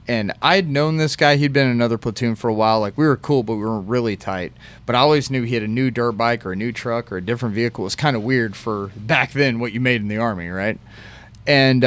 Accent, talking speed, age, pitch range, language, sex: American, 290 wpm, 30-49, 110-130 Hz, English, male